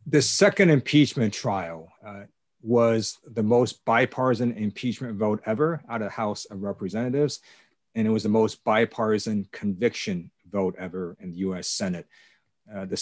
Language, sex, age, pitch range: English, male, 40-59, 95-120 Hz